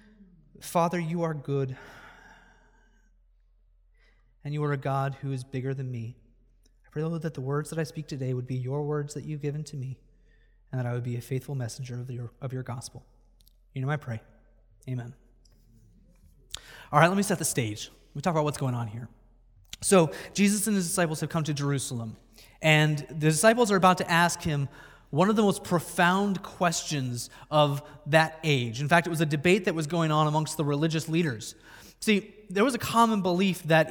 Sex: male